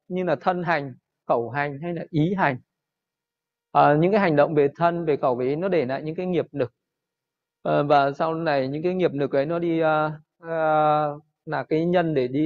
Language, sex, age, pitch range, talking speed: Vietnamese, male, 20-39, 145-175 Hz, 220 wpm